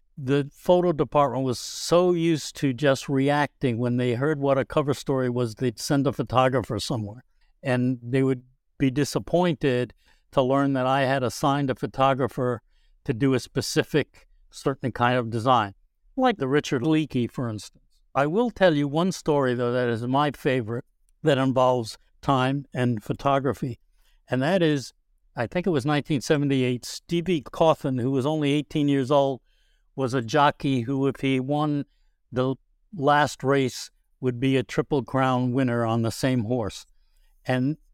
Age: 60-79